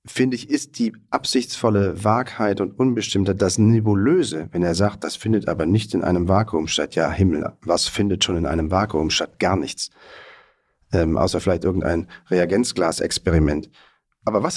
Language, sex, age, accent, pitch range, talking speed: German, male, 40-59, German, 90-115 Hz, 160 wpm